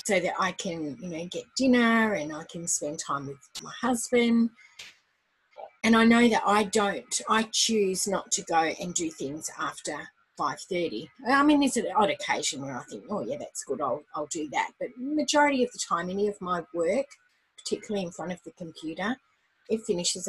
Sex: female